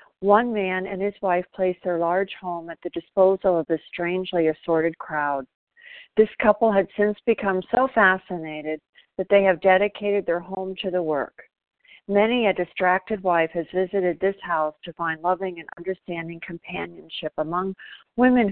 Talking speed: 160 wpm